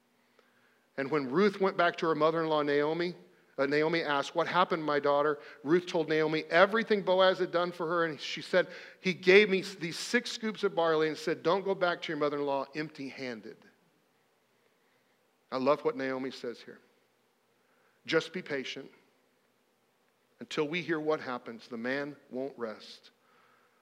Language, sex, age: English, male, 50-69